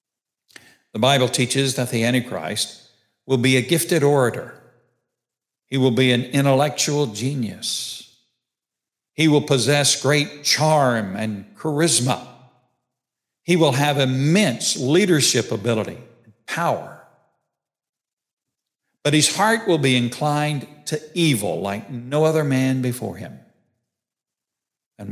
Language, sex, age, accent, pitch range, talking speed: English, male, 60-79, American, 115-145 Hz, 110 wpm